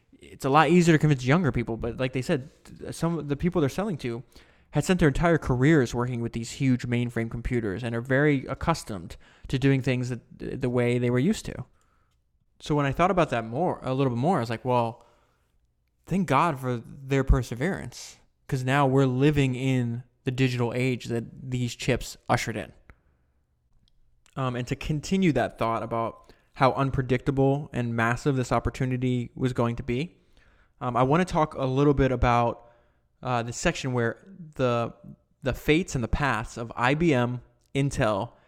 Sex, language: male, English